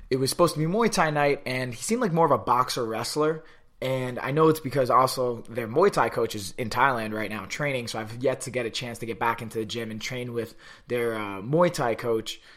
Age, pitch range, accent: 20-39, 110-145 Hz, American